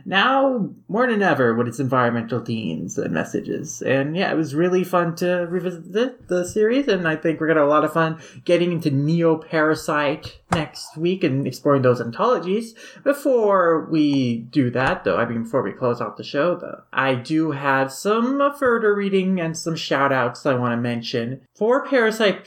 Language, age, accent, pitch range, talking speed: English, 30-49, American, 140-185 Hz, 190 wpm